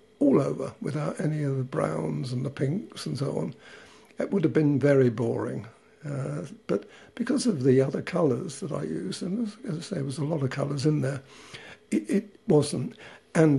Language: English